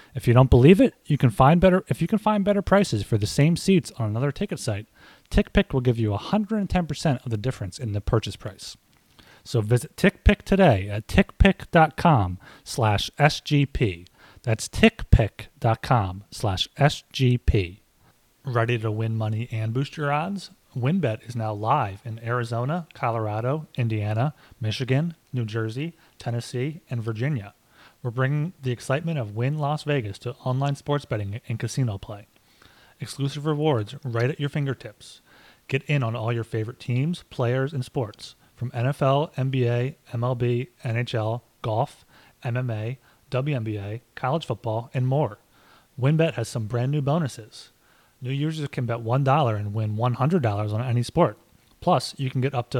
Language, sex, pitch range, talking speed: English, male, 110-145 Hz, 150 wpm